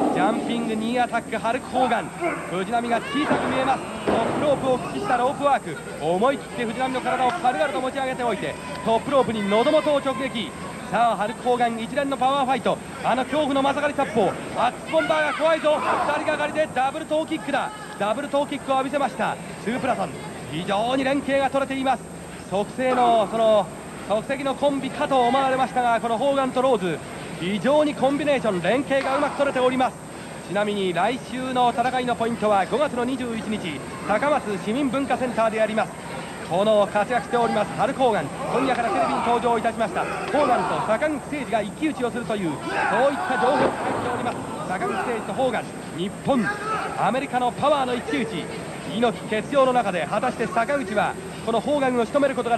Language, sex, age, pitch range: English, male, 40-59, 220-275 Hz